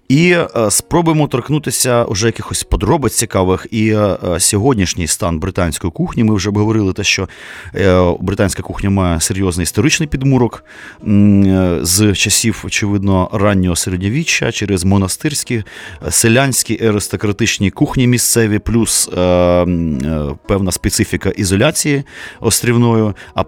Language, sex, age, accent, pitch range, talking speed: Ukrainian, male, 30-49, native, 95-120 Hz, 105 wpm